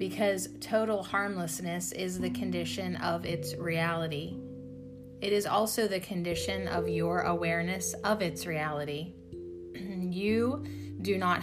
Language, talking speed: English, 120 wpm